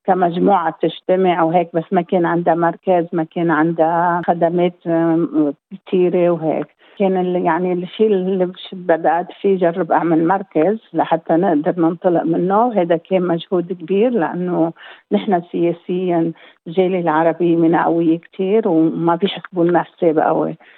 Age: 50-69